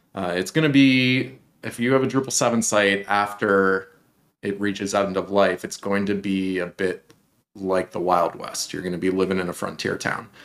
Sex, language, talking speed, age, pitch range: male, English, 210 wpm, 30-49, 95-115 Hz